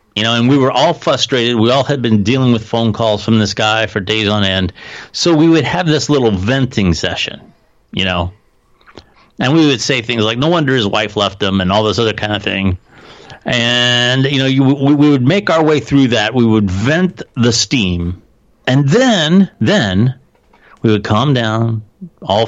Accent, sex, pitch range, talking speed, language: American, male, 105-130 Hz, 200 wpm, English